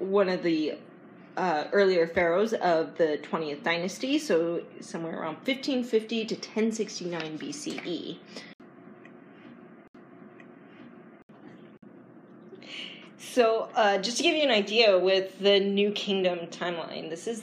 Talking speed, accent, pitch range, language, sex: 110 wpm, American, 185-280 Hz, English, female